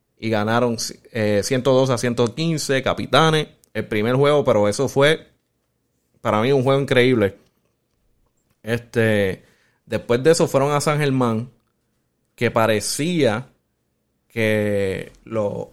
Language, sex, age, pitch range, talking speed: Spanish, male, 30-49, 115-140 Hz, 115 wpm